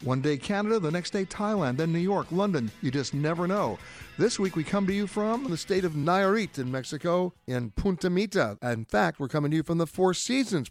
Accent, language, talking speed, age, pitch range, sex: American, English, 230 wpm, 60-79, 125-180 Hz, male